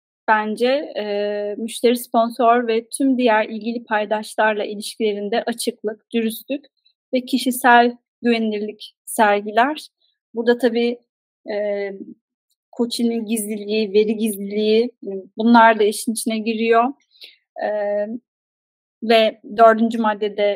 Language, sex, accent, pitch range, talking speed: Turkish, female, native, 215-255 Hz, 95 wpm